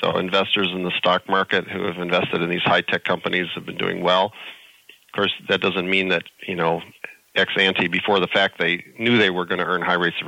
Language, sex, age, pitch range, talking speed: English, male, 40-59, 90-115 Hz, 230 wpm